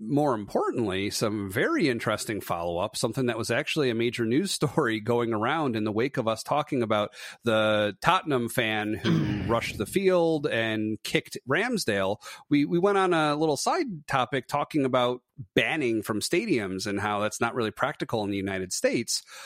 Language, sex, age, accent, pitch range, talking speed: English, male, 30-49, American, 110-150 Hz, 175 wpm